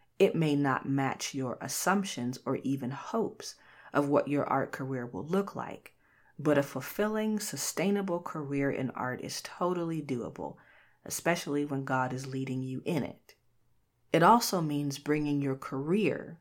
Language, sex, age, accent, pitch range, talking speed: English, female, 30-49, American, 130-155 Hz, 150 wpm